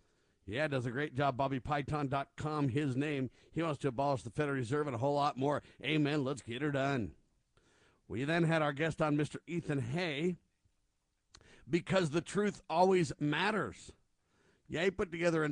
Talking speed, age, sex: 170 wpm, 50-69, male